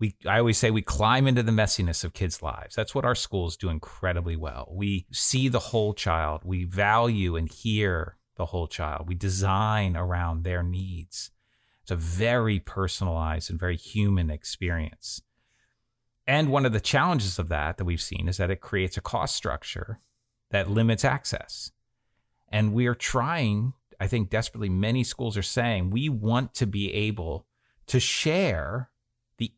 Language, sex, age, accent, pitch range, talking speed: English, male, 30-49, American, 95-130 Hz, 170 wpm